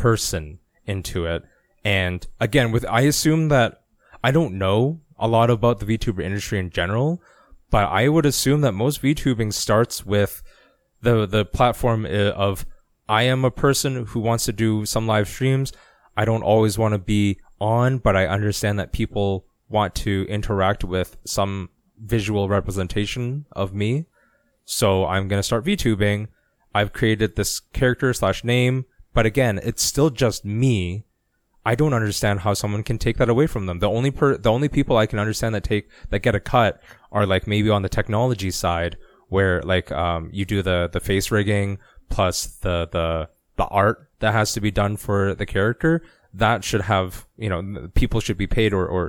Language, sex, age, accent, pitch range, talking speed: English, male, 20-39, American, 95-120 Hz, 180 wpm